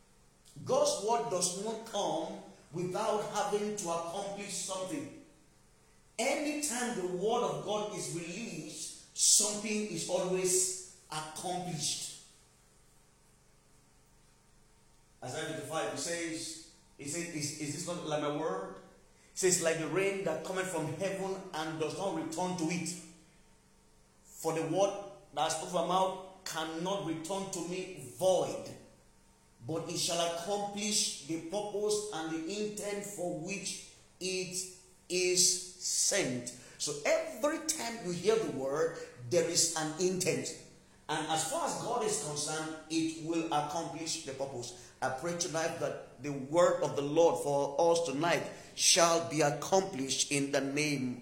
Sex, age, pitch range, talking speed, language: male, 40-59, 155-195 Hz, 135 wpm, English